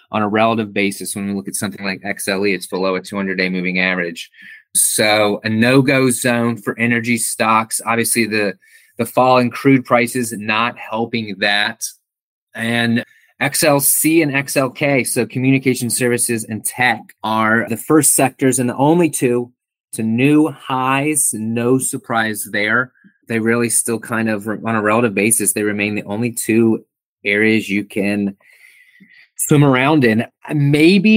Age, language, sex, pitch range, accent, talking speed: 30-49, English, male, 105-130 Hz, American, 150 wpm